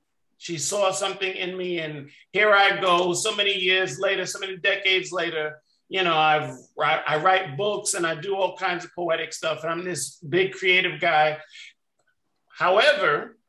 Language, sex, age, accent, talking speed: English, male, 50-69, American, 165 wpm